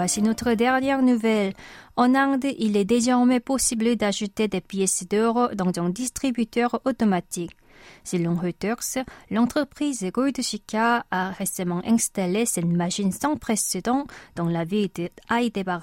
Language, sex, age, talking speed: French, female, 30-49, 120 wpm